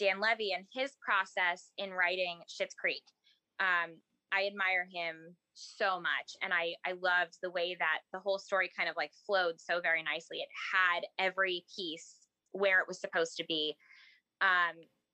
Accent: American